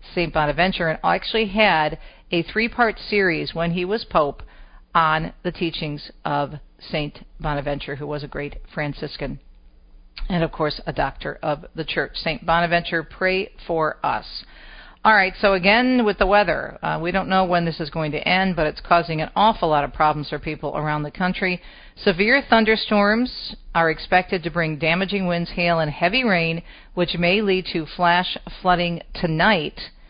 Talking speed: 170 wpm